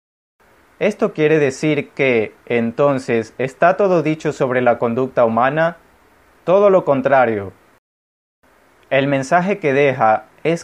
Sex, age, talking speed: male, 30-49, 115 wpm